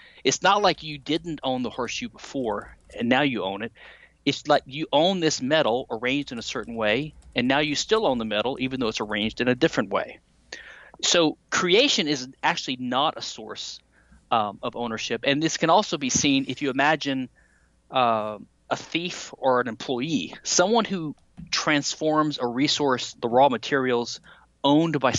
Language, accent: English, American